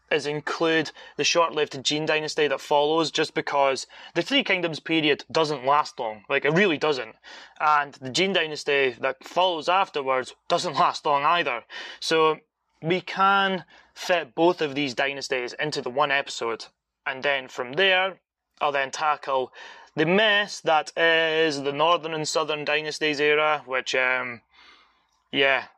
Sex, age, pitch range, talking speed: male, 20-39, 135-160 Hz, 150 wpm